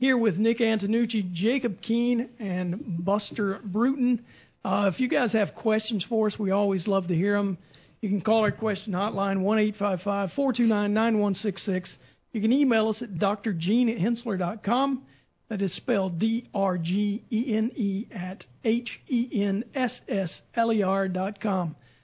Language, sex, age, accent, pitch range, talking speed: English, male, 50-69, American, 195-230 Hz, 115 wpm